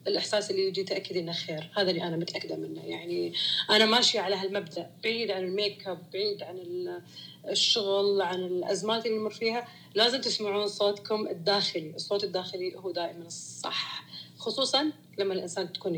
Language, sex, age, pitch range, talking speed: Arabic, female, 30-49, 180-225 Hz, 150 wpm